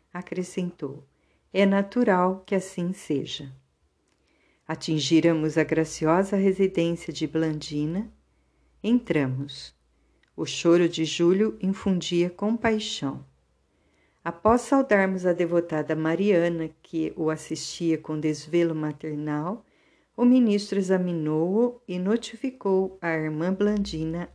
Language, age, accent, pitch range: Portuguese, 50-69, Brazilian, 155-195 Hz